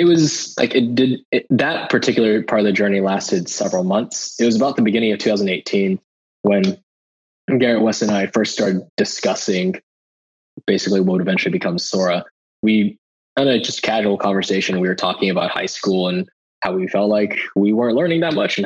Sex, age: male, 20-39